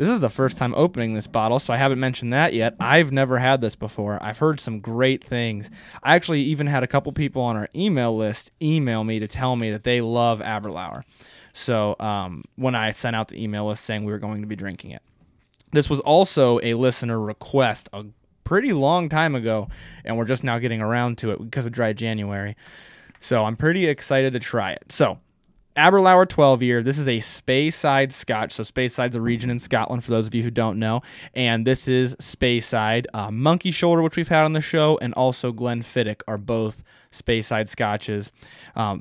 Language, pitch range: English, 110-135 Hz